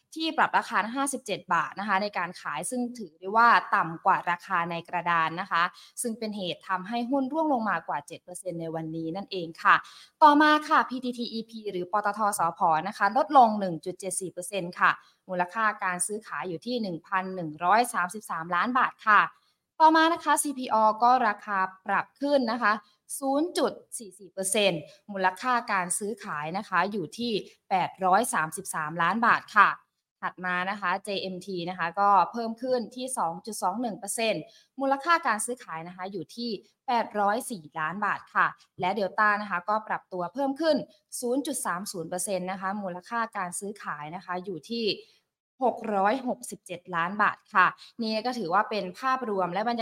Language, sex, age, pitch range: Thai, female, 20-39, 180-235 Hz